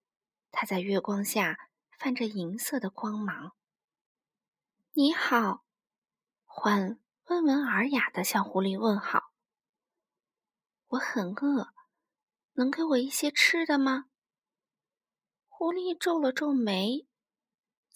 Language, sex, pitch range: Chinese, female, 210-295 Hz